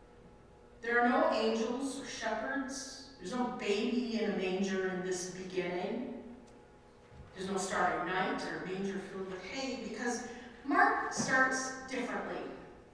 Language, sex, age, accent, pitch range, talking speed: English, female, 40-59, American, 190-260 Hz, 130 wpm